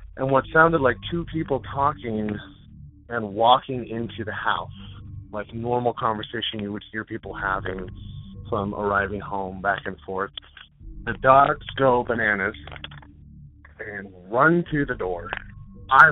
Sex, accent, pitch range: male, American, 95-125 Hz